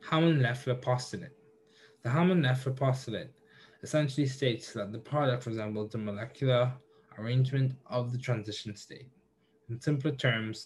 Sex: male